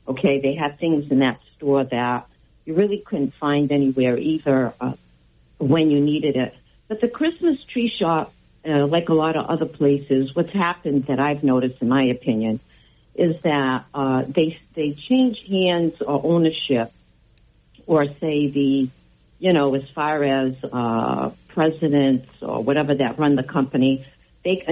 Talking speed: 160 wpm